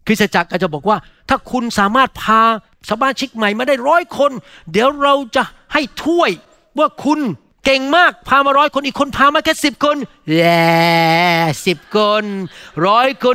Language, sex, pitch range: Thai, male, 195-265 Hz